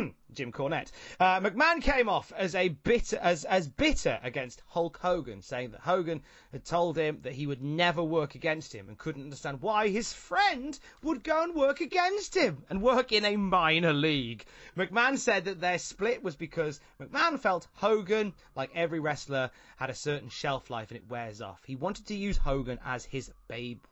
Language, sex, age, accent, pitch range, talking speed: English, male, 30-49, British, 140-205 Hz, 190 wpm